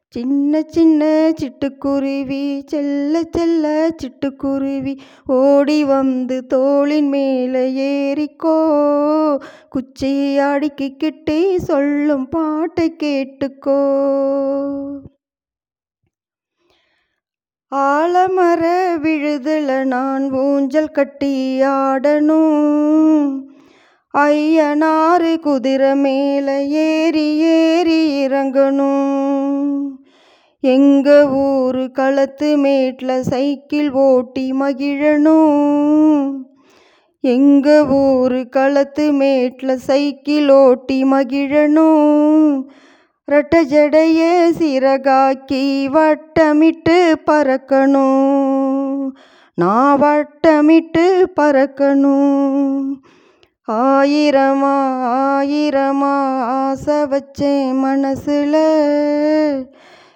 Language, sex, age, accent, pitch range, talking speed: Tamil, female, 20-39, native, 275-310 Hz, 50 wpm